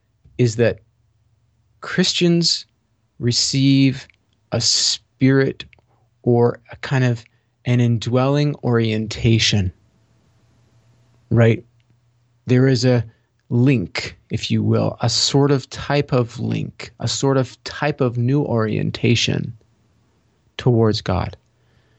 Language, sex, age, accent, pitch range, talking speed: English, male, 30-49, American, 115-130 Hz, 100 wpm